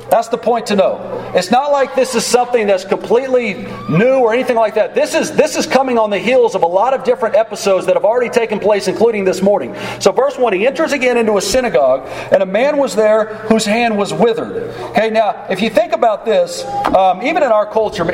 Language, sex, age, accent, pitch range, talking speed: English, male, 40-59, American, 200-240 Hz, 230 wpm